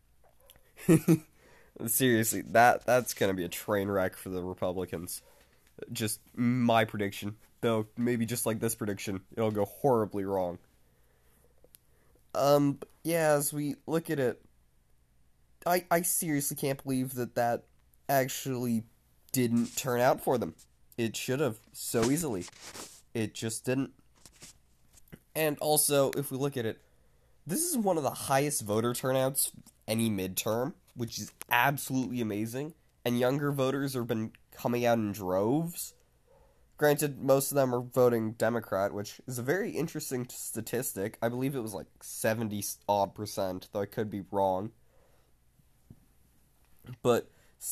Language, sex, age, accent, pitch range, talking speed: English, male, 20-39, American, 100-130 Hz, 135 wpm